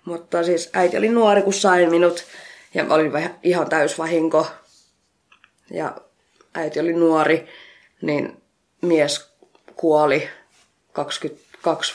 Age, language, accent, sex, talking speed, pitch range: 20-39, Finnish, native, female, 100 wpm, 160-195 Hz